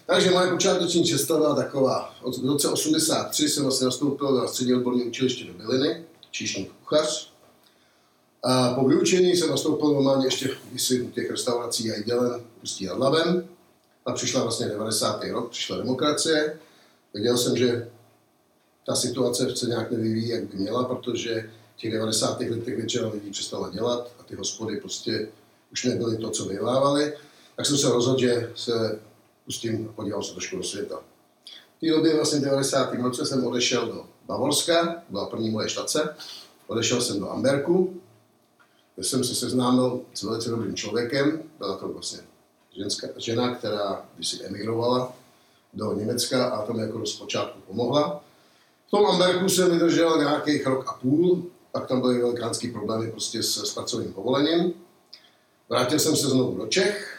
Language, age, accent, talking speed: Czech, 50-69, native, 150 wpm